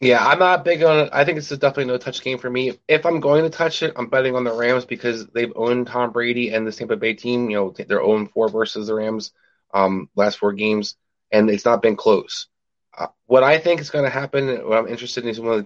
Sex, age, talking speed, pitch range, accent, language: male, 20-39, 265 wpm, 105-130 Hz, American, English